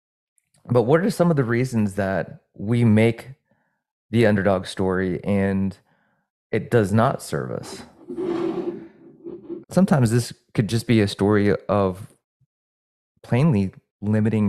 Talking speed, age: 120 wpm, 20-39